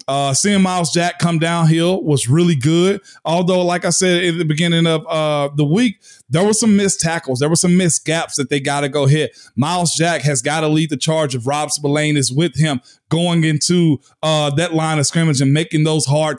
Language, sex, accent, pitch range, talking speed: English, male, American, 150-185 Hz, 225 wpm